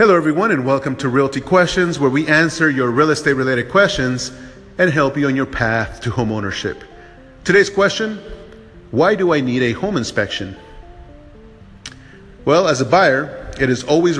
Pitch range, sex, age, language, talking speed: 120-145 Hz, male, 30-49, English, 170 wpm